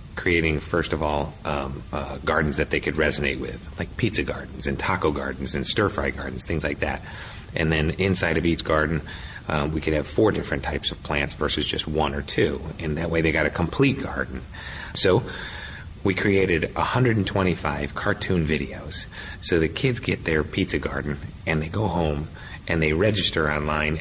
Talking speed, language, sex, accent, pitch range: 180 wpm, English, male, American, 75-95 Hz